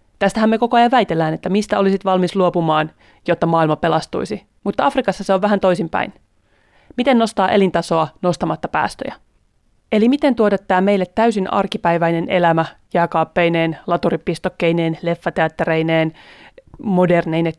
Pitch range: 165-200 Hz